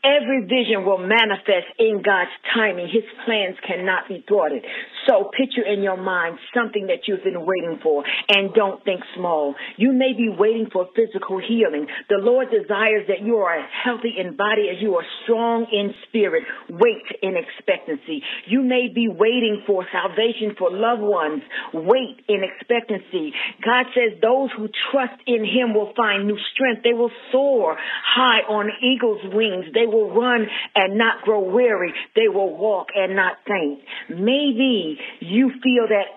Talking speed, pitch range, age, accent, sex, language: 165 wpm, 195-245 Hz, 50-69, American, female, English